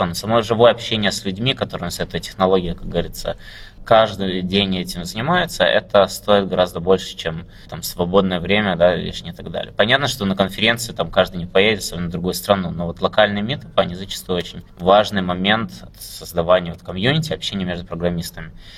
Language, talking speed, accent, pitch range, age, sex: Russian, 175 wpm, native, 90-105 Hz, 20-39, male